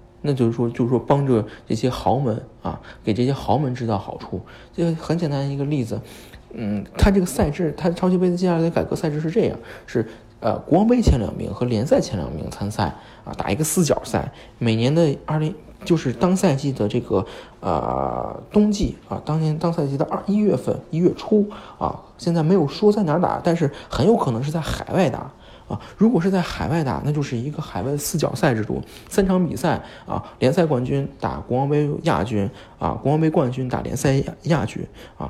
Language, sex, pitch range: Chinese, male, 125-170 Hz